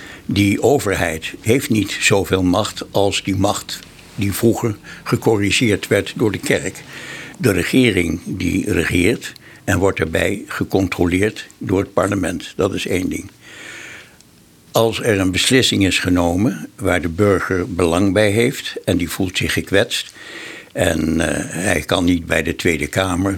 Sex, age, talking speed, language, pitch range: male, 60-79, 145 wpm, Dutch, 90-120 Hz